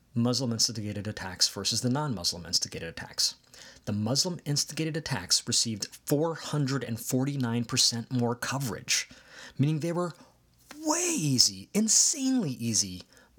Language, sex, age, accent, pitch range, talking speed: English, male, 30-49, American, 100-130 Hz, 90 wpm